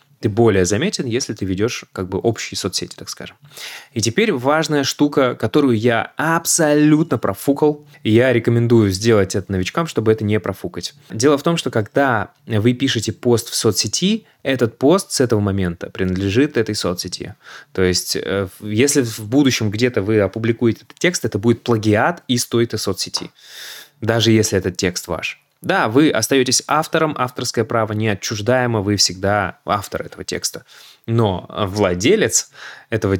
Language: Russian